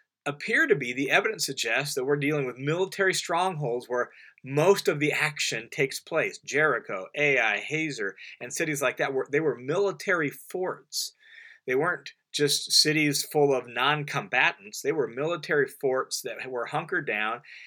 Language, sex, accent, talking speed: English, male, American, 155 wpm